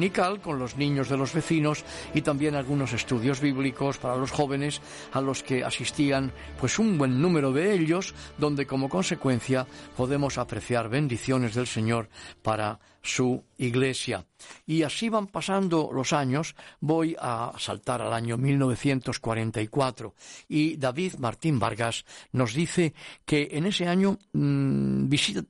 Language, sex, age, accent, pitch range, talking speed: Spanish, male, 50-69, Spanish, 125-155 Hz, 135 wpm